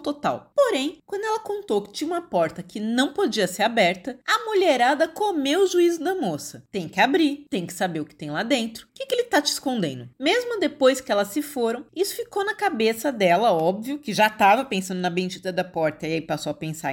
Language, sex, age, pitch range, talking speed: Portuguese, female, 30-49, 195-310 Hz, 225 wpm